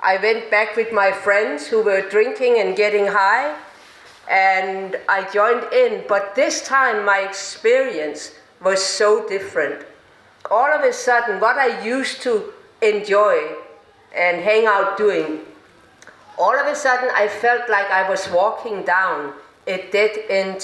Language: English